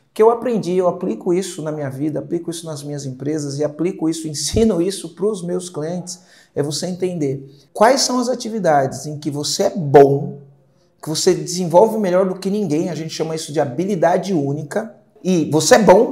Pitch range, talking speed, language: 150-200 Hz, 195 wpm, Portuguese